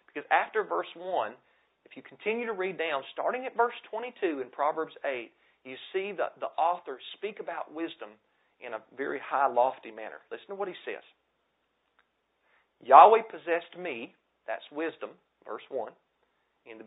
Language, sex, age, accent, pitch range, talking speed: English, male, 40-59, American, 150-210 Hz, 160 wpm